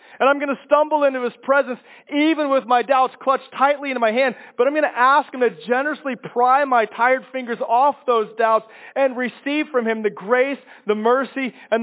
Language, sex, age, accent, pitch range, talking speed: English, male, 30-49, American, 245-290 Hz, 210 wpm